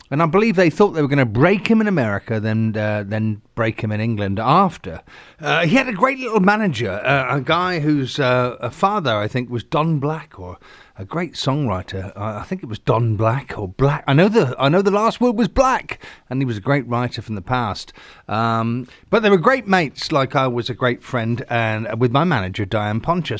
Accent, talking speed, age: British, 230 wpm, 30-49